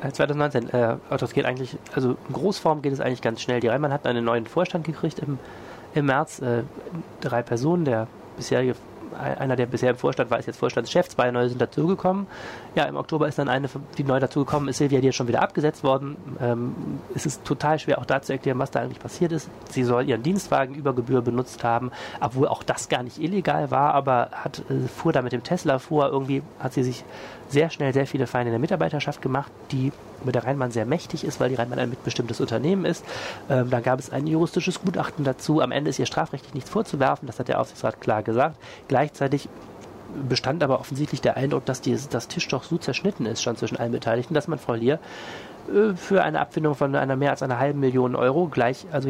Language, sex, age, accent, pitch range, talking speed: German, male, 30-49, German, 125-155 Hz, 215 wpm